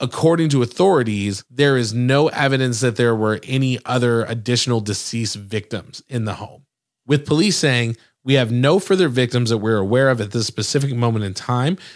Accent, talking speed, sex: American, 180 wpm, male